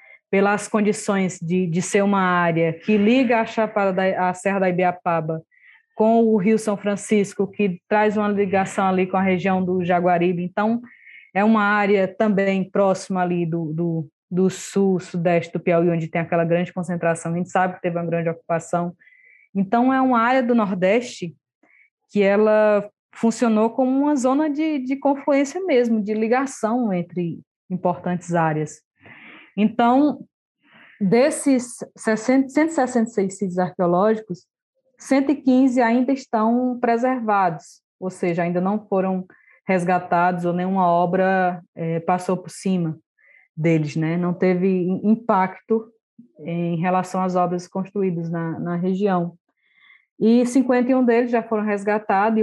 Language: English